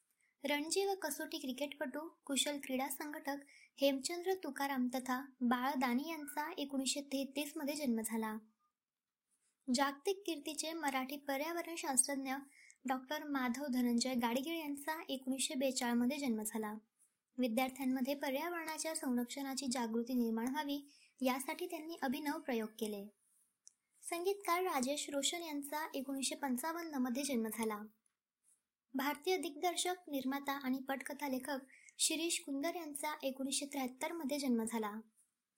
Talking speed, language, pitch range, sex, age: 105 wpm, Marathi, 255-305 Hz, male, 20-39